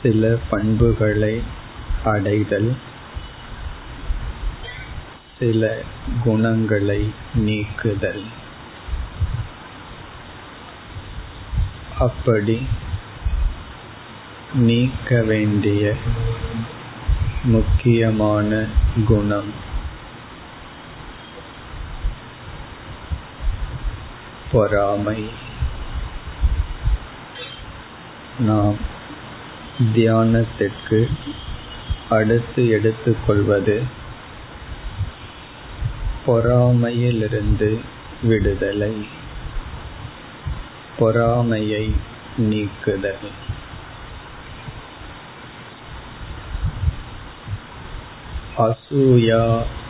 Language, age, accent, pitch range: Tamil, 50-69, native, 105-115 Hz